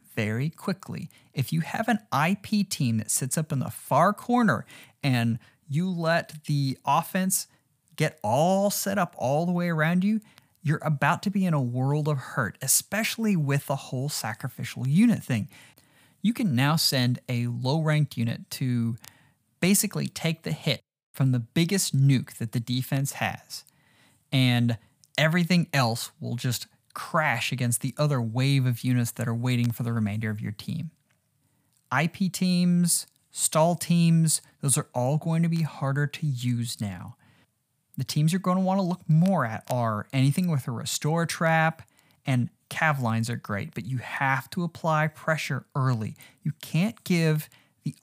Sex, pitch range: male, 125-165 Hz